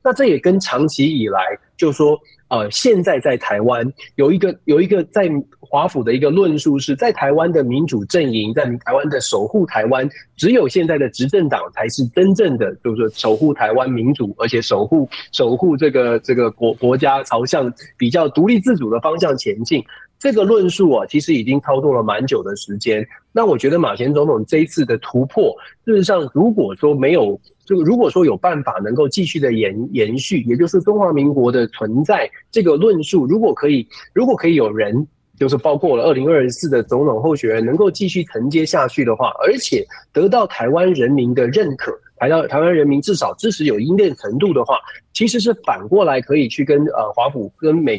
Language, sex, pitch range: Chinese, male, 125-175 Hz